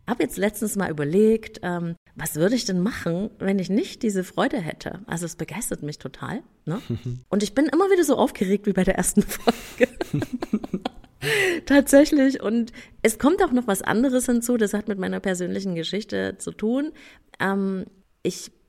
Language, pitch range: German, 170-230 Hz